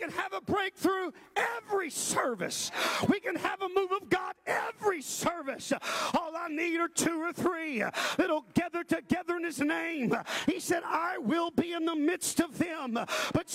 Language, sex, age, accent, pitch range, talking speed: English, male, 40-59, American, 290-345 Hz, 175 wpm